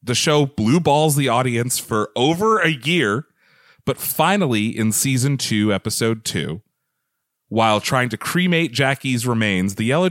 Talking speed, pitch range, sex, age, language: 150 wpm, 110-140 Hz, male, 30-49, English